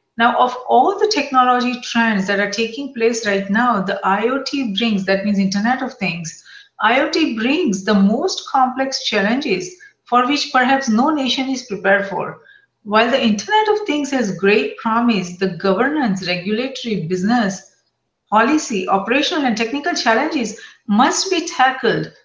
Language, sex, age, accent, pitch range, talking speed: English, female, 40-59, Indian, 205-275 Hz, 145 wpm